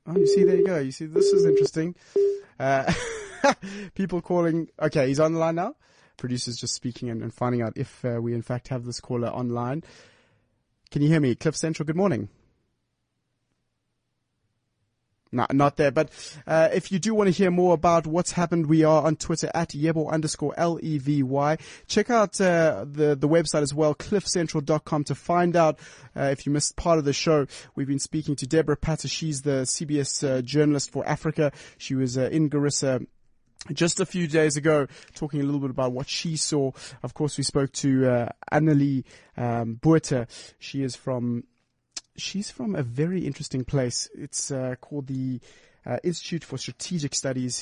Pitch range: 130-165 Hz